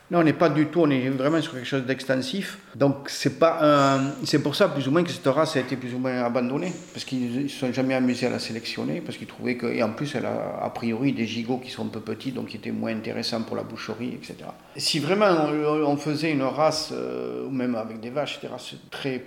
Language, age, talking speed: French, 50-69, 265 wpm